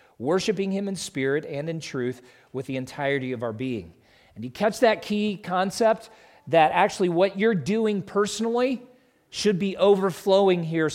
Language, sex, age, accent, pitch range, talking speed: English, male, 40-59, American, 125-180 Hz, 160 wpm